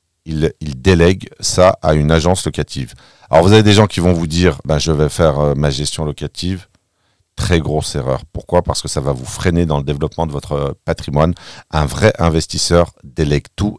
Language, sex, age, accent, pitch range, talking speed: French, male, 50-69, French, 75-100 Hz, 195 wpm